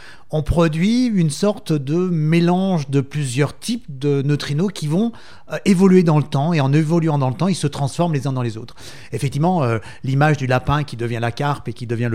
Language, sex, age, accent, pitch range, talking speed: French, male, 30-49, French, 130-170 Hz, 215 wpm